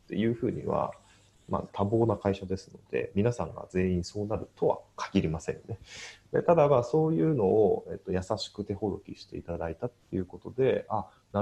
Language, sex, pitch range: Japanese, male, 95-130 Hz